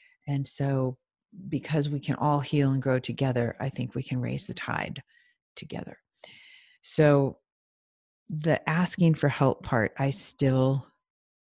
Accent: American